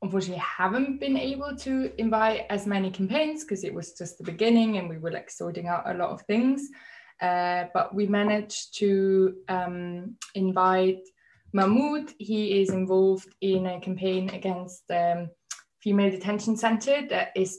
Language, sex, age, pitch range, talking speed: English, female, 20-39, 185-220 Hz, 160 wpm